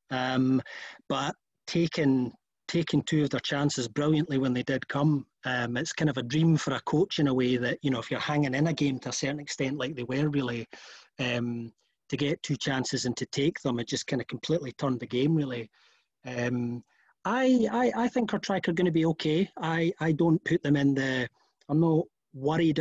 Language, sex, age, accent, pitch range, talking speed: English, male, 30-49, British, 130-155 Hz, 215 wpm